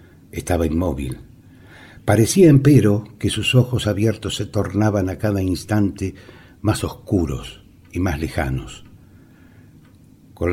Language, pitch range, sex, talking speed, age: Spanish, 85-110 Hz, male, 110 wpm, 60-79